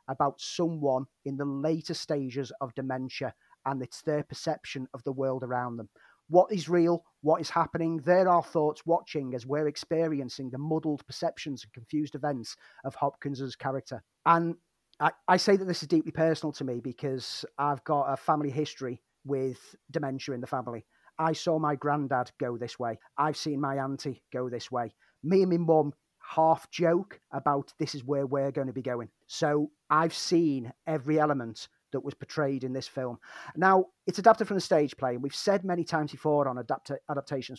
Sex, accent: male, British